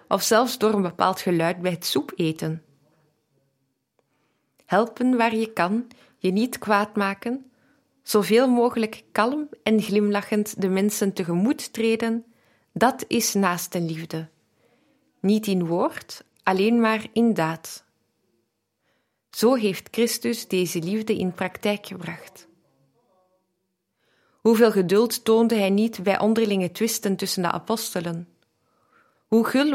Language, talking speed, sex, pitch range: Dutch, 120 wpm, female, 180-225 Hz